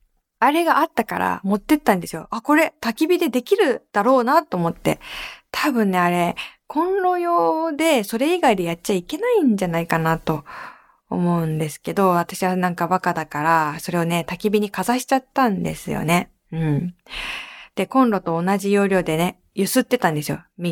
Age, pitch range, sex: 20-39, 180-295 Hz, female